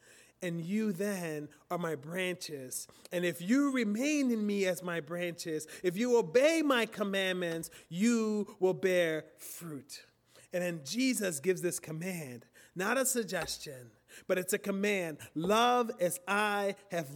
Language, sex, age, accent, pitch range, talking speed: English, male, 30-49, American, 165-205 Hz, 145 wpm